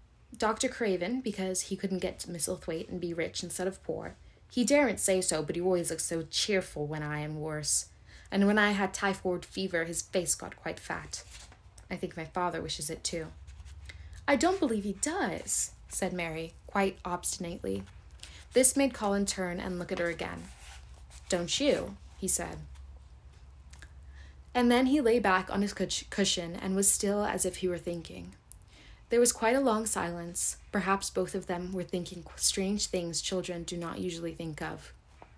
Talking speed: 175 wpm